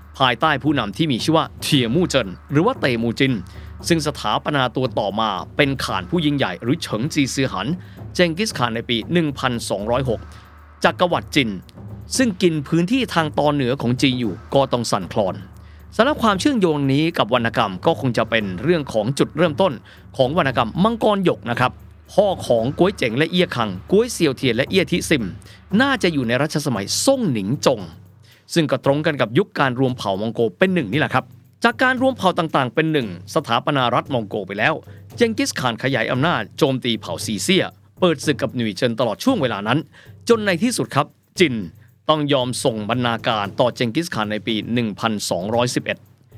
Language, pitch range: Thai, 110-165 Hz